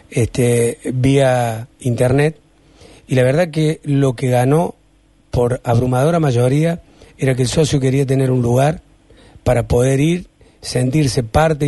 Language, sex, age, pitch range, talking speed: Spanish, male, 40-59, 130-160 Hz, 130 wpm